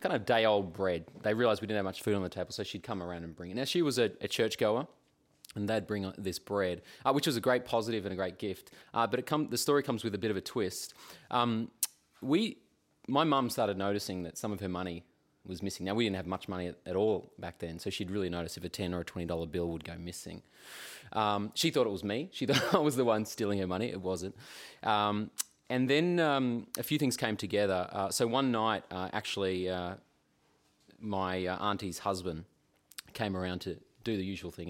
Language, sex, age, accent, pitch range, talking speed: English, male, 20-39, Australian, 90-110 Hz, 240 wpm